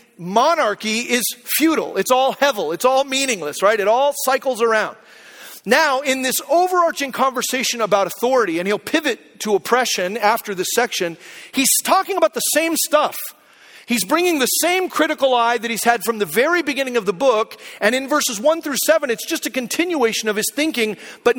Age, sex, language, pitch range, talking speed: 40-59, male, English, 225-275 Hz, 180 wpm